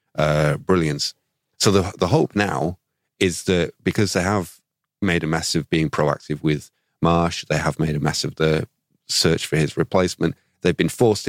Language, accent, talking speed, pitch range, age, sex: English, British, 180 wpm, 90-125 Hz, 30-49, male